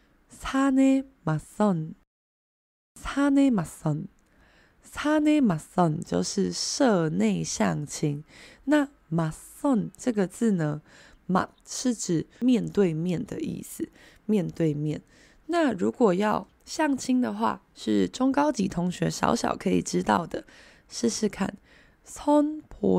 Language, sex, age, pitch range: Chinese, female, 20-39, 165-275 Hz